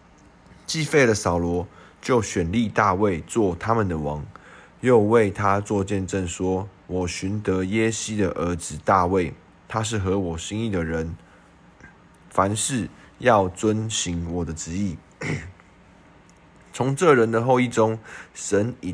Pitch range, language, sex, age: 90-110 Hz, Chinese, male, 20-39